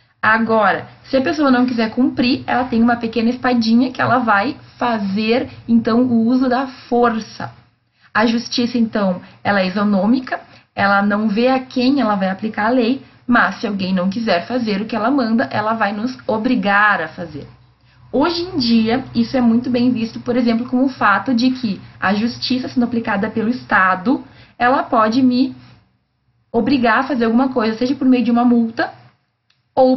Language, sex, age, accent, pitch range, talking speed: Portuguese, female, 20-39, Brazilian, 220-260 Hz, 180 wpm